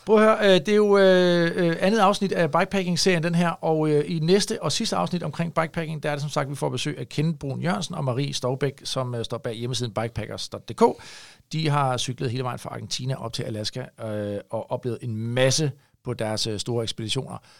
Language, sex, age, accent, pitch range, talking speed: Danish, male, 40-59, native, 115-155 Hz, 195 wpm